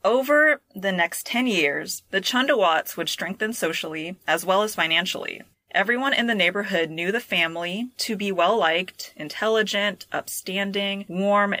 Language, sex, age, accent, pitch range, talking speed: English, female, 30-49, American, 165-205 Hz, 140 wpm